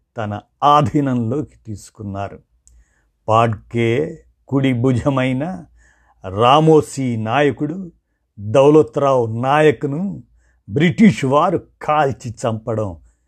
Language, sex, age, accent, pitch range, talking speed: Telugu, male, 50-69, native, 105-145 Hz, 65 wpm